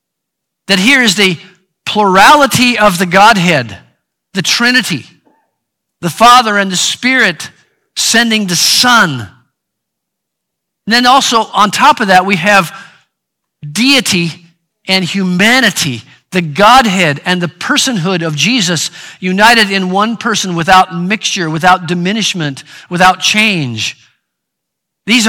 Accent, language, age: American, English, 50-69